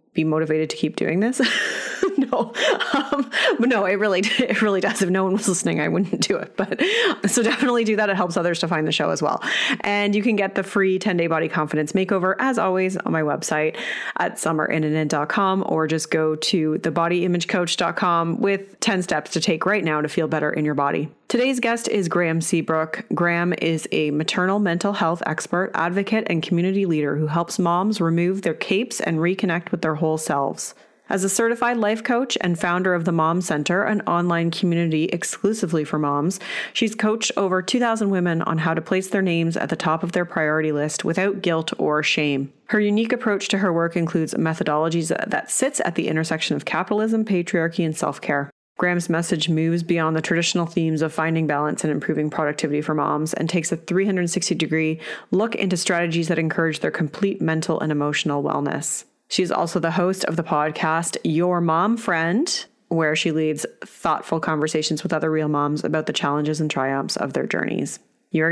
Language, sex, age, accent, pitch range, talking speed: English, female, 30-49, American, 160-195 Hz, 190 wpm